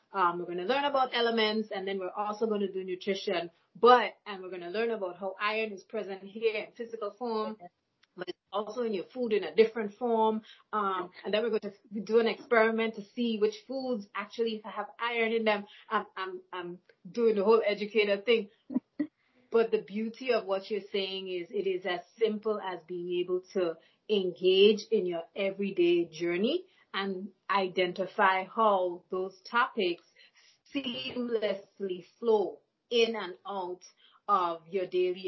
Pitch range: 180-225 Hz